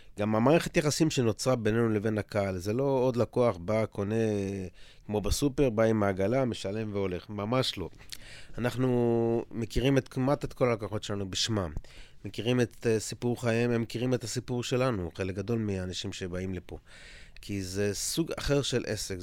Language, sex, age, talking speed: Hebrew, male, 30-49, 160 wpm